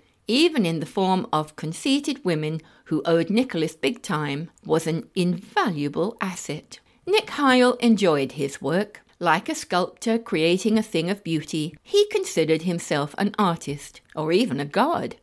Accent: British